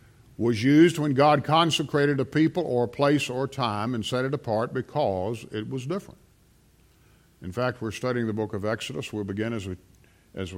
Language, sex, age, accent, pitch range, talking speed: English, male, 50-69, American, 115-160 Hz, 180 wpm